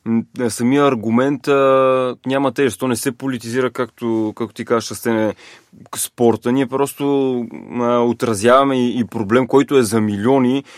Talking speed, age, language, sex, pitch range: 130 wpm, 20-39, Bulgarian, male, 115-135 Hz